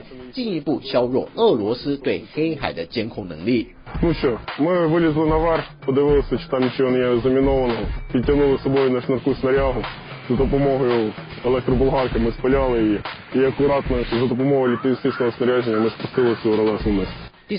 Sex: male